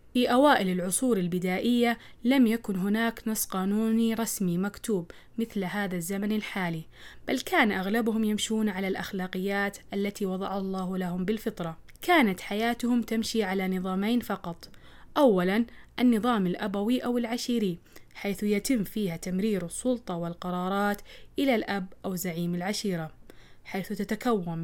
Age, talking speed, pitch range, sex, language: 20-39, 120 wpm, 185-225 Hz, female, Arabic